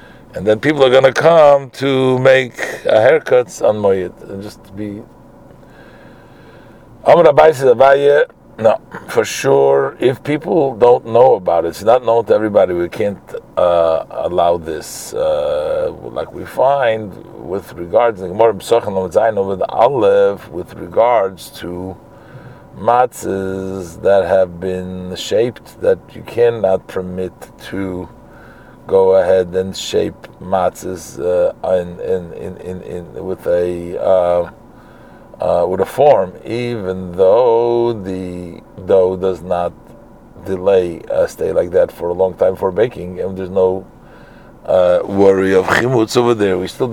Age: 50-69